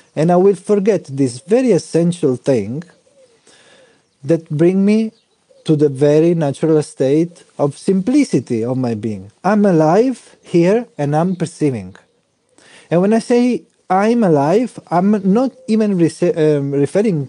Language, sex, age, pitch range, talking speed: English, male, 40-59, 145-195 Hz, 130 wpm